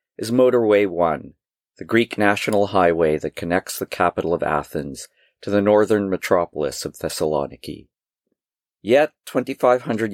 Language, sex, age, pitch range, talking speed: English, male, 50-69, 95-120 Hz, 125 wpm